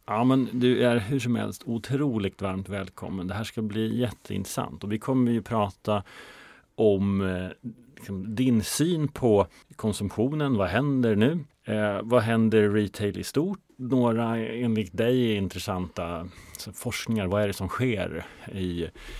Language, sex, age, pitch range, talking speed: Swedish, male, 30-49, 95-120 Hz, 130 wpm